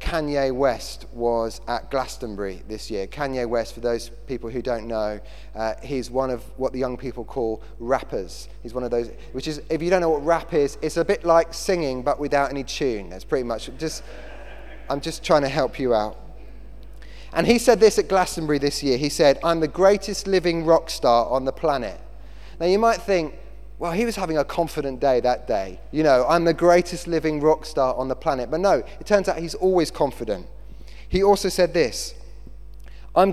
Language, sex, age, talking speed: English, male, 30-49, 205 wpm